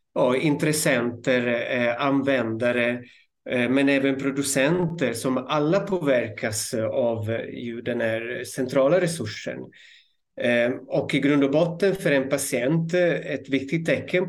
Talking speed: 110 wpm